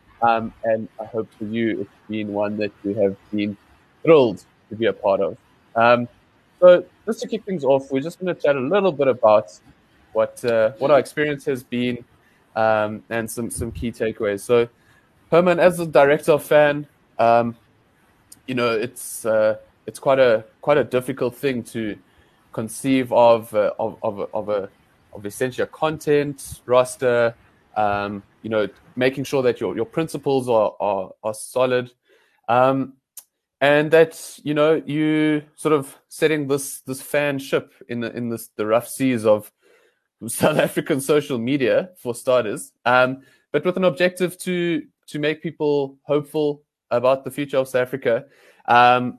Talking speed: 165 wpm